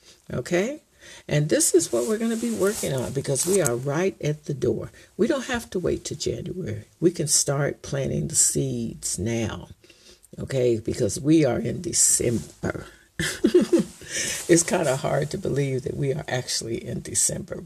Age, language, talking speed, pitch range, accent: 60-79, English, 170 wpm, 125-180 Hz, American